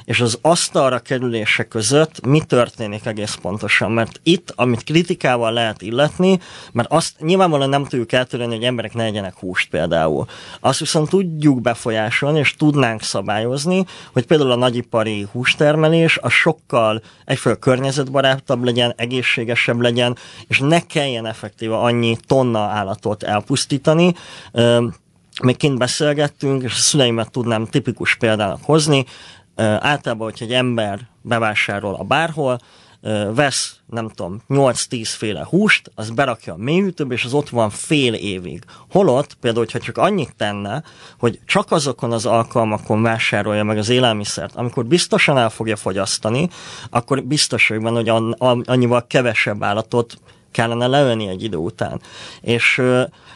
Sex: male